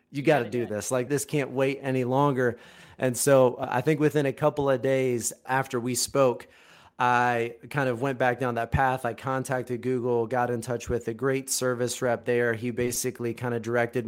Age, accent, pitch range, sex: 30-49, American, 120-135 Hz, male